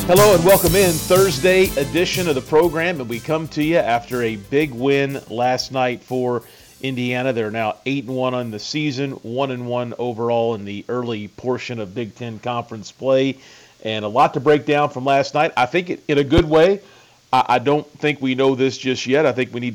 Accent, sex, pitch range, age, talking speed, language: American, male, 120-140 Hz, 40-59, 215 wpm, English